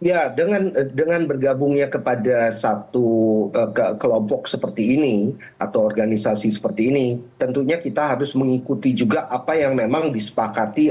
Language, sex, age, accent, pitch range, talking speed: Indonesian, male, 40-59, native, 125-175 Hz, 130 wpm